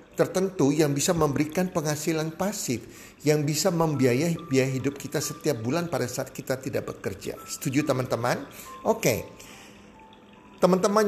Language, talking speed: Indonesian, 130 wpm